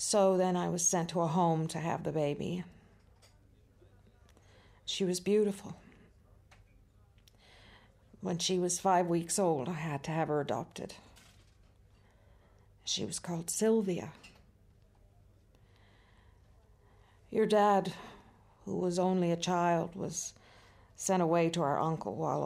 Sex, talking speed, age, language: female, 120 wpm, 50-69, English